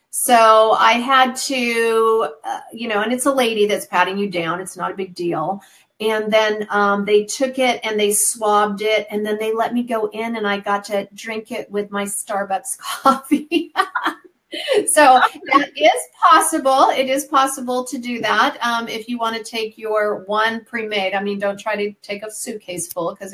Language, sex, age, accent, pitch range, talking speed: English, female, 40-59, American, 215-260 Hz, 200 wpm